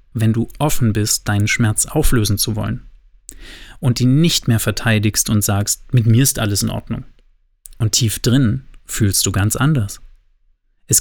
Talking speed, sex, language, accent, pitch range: 165 wpm, male, German, German, 105-130 Hz